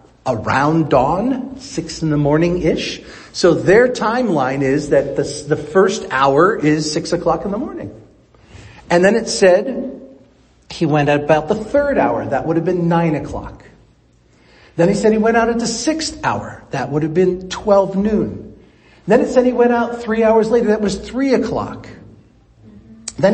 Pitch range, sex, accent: 170-230 Hz, male, American